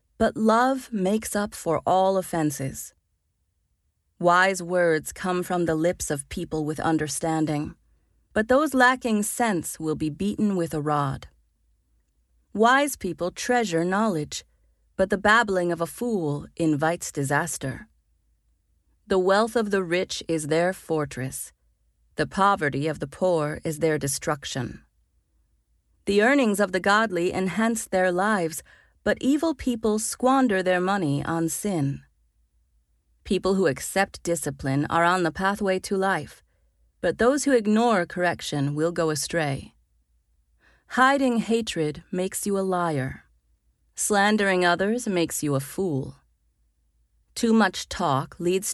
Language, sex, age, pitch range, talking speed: English, female, 30-49, 130-200 Hz, 130 wpm